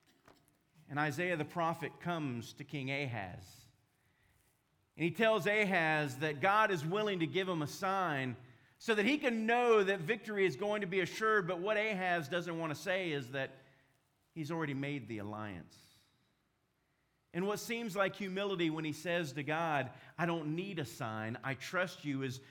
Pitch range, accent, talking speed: 135-210 Hz, American, 175 wpm